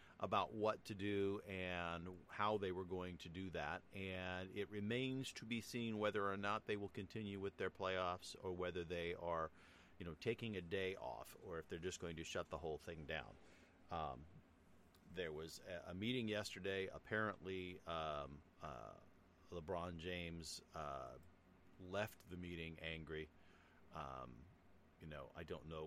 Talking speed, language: 165 wpm, English